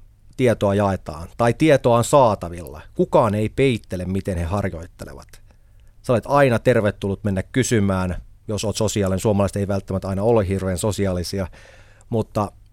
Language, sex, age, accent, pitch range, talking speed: Finnish, male, 30-49, native, 100-115 Hz, 135 wpm